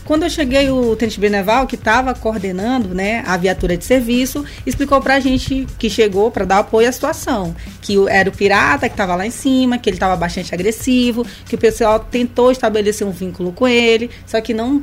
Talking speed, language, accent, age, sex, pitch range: 210 wpm, Portuguese, Brazilian, 20-39, female, 200-245 Hz